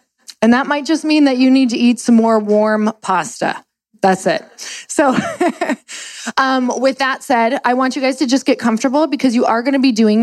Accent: American